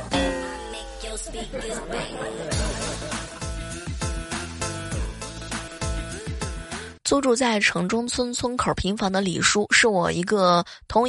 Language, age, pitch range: Chinese, 20-39, 180-235 Hz